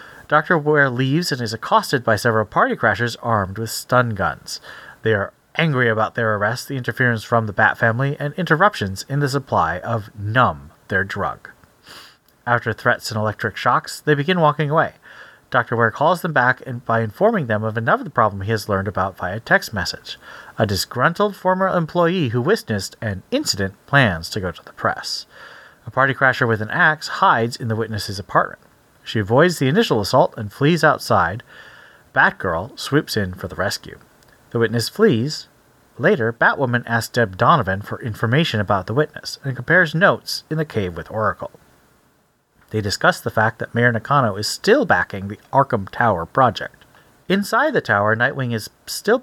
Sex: male